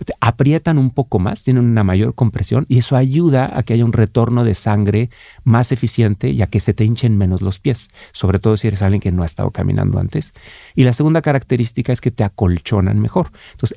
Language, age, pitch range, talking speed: Spanish, 40-59, 105-130 Hz, 220 wpm